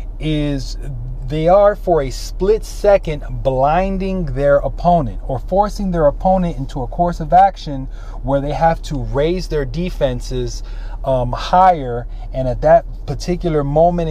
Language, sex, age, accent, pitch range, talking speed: English, male, 30-49, American, 120-165 Hz, 140 wpm